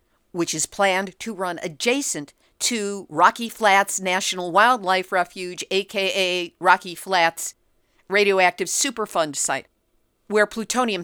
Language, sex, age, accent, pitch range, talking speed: English, female, 50-69, American, 165-230 Hz, 110 wpm